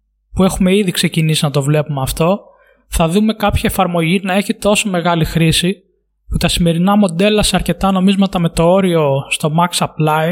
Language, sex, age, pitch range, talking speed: Greek, male, 20-39, 165-195 Hz, 175 wpm